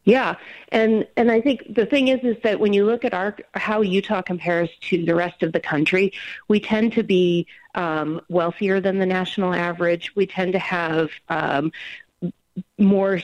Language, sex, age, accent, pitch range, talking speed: English, female, 40-59, American, 155-190 Hz, 180 wpm